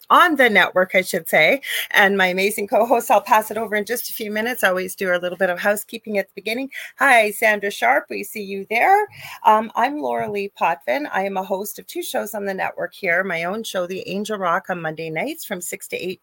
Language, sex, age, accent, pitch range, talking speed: English, female, 40-59, American, 160-205 Hz, 245 wpm